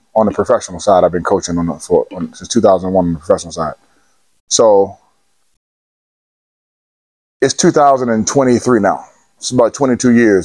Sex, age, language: male, 20-39, English